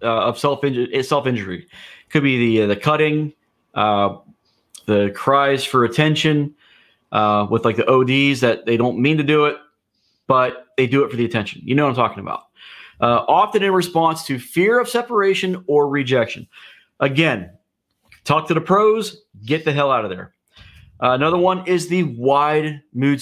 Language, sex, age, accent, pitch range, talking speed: English, male, 30-49, American, 125-160 Hz, 180 wpm